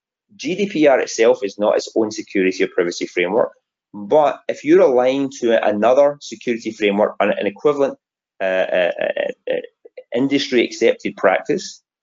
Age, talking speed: 30-49, 140 wpm